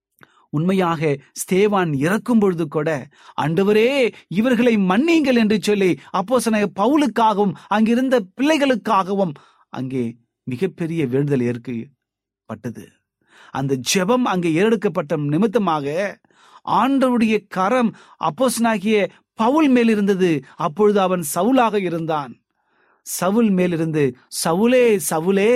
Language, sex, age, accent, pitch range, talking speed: Tamil, male, 30-49, native, 145-220 Hz, 85 wpm